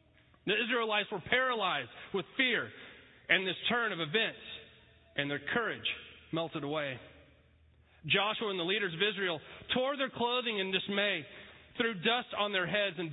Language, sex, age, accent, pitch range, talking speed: English, male, 30-49, American, 160-230 Hz, 150 wpm